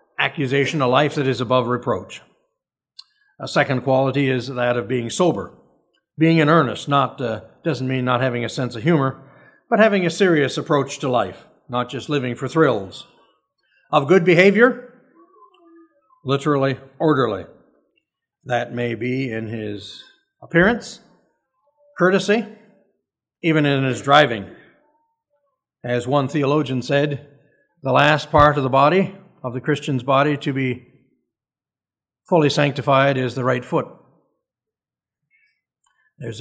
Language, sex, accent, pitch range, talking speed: English, male, American, 125-180 Hz, 130 wpm